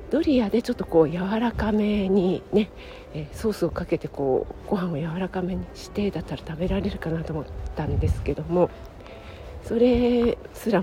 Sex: female